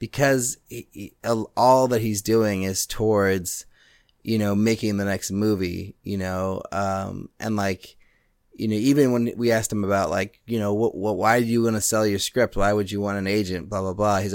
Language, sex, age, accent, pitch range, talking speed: English, male, 30-49, American, 95-115 Hz, 215 wpm